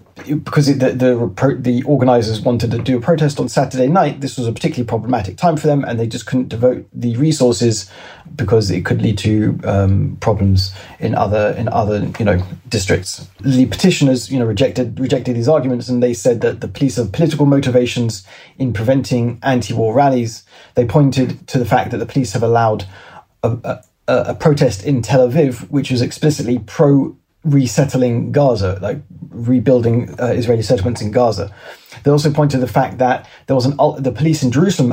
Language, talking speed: English, 185 wpm